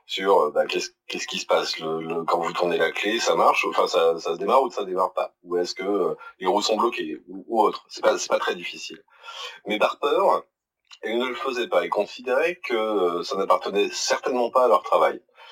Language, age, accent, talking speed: French, 30-49, French, 215 wpm